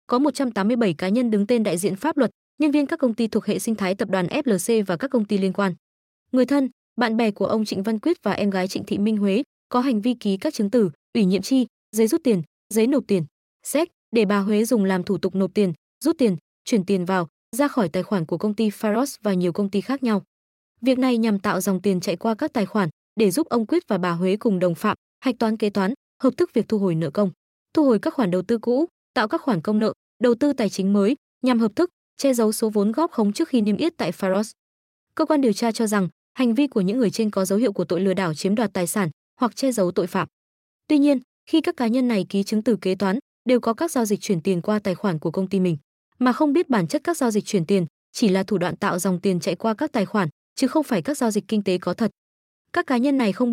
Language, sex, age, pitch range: Vietnamese, female, 20-39, 195-250 Hz